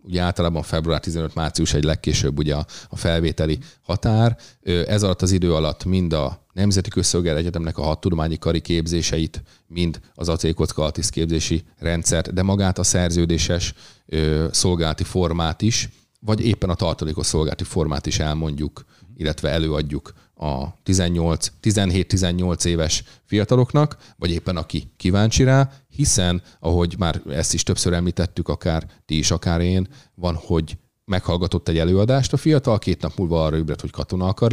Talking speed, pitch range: 145 wpm, 85-105 Hz